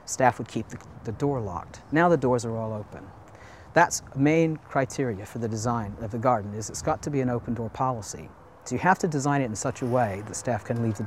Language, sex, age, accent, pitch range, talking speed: English, male, 40-59, American, 110-140 Hz, 255 wpm